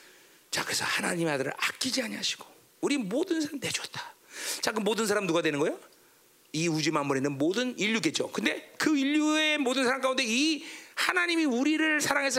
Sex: male